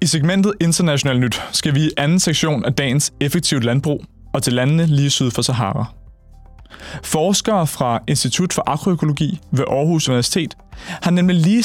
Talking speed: 160 wpm